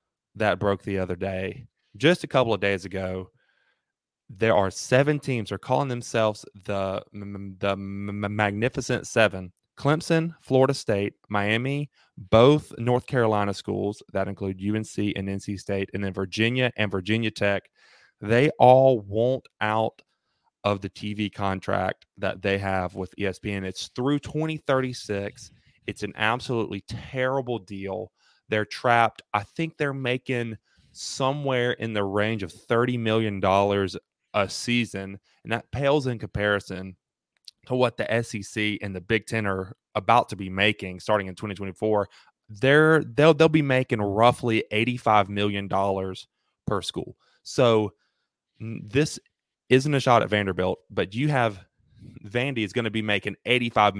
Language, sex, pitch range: English, male, 100-125 Hz